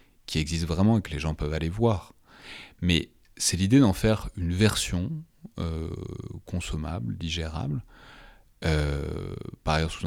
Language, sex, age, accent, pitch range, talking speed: French, male, 30-49, French, 85-110 Hz, 145 wpm